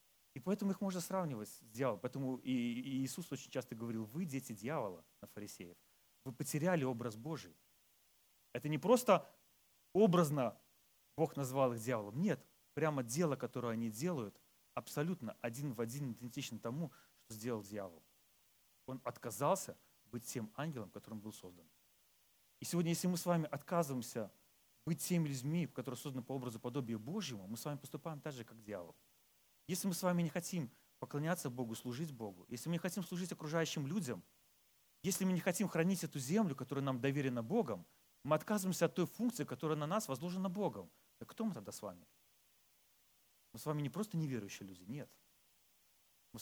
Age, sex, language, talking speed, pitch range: 30-49, male, Russian, 170 wpm, 115-165 Hz